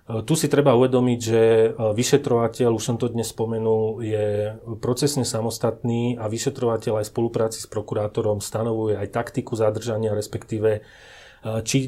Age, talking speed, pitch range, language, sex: 30-49, 135 wpm, 110-125 Hz, Slovak, male